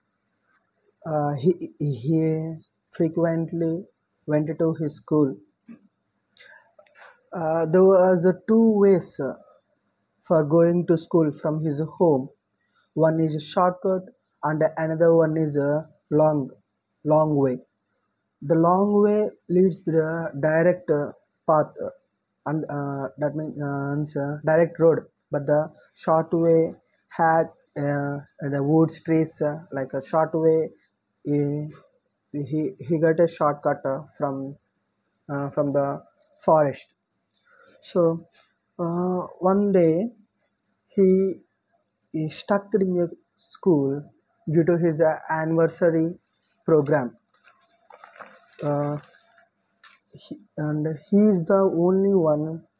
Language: English